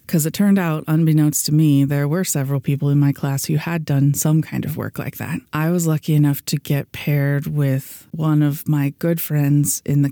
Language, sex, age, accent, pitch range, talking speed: English, female, 20-39, American, 140-155 Hz, 225 wpm